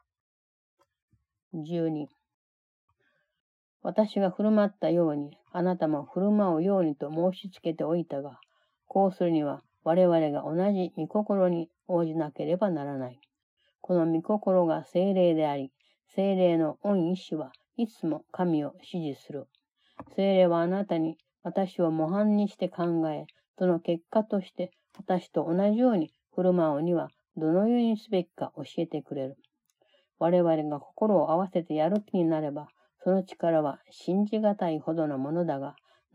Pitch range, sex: 155-195 Hz, female